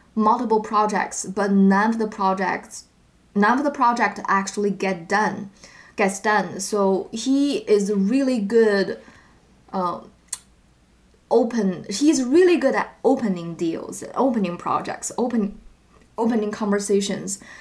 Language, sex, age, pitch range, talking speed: English, female, 20-39, 195-245 Hz, 115 wpm